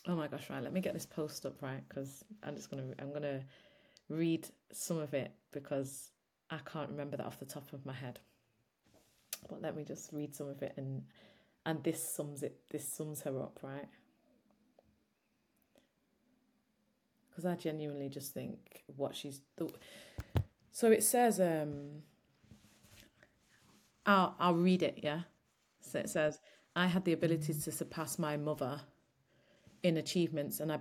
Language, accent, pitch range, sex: English, British, 145-160 Hz, female